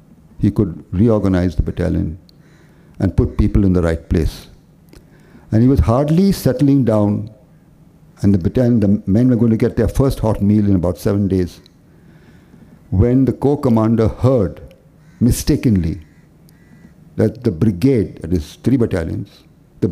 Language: English